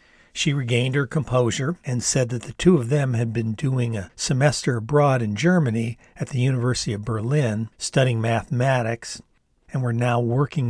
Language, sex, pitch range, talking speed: English, male, 110-140 Hz, 170 wpm